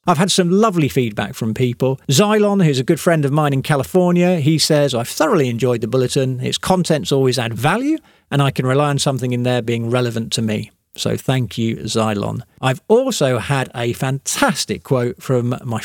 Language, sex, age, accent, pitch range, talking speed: English, male, 40-59, British, 125-165 Hz, 195 wpm